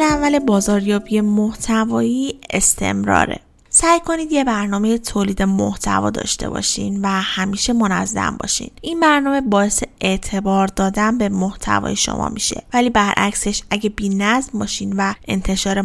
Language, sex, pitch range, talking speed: Persian, female, 200-250 Hz, 125 wpm